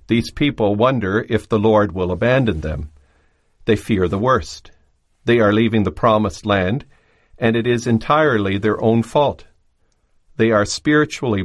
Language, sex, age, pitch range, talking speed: English, male, 50-69, 95-120 Hz, 150 wpm